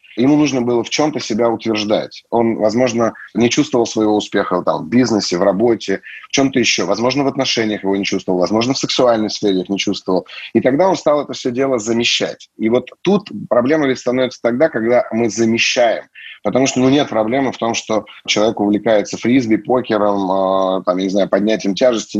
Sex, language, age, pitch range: male, Russian, 30-49, 105-130 Hz